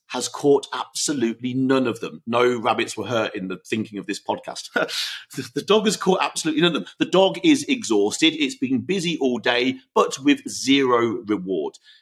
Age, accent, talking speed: 50-69, British, 185 wpm